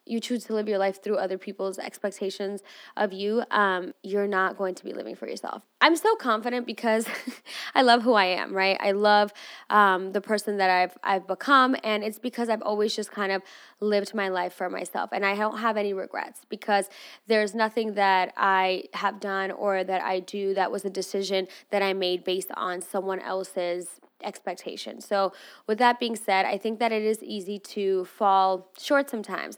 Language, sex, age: English, female, 10-29